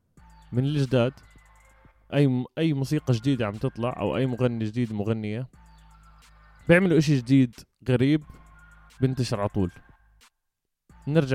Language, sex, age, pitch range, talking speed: Arabic, male, 20-39, 115-150 Hz, 105 wpm